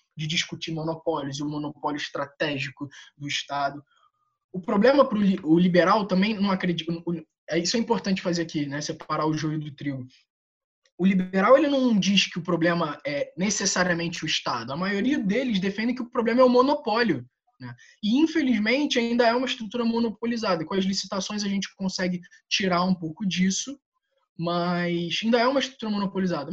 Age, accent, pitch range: 20-39, Brazilian, 165-225 Hz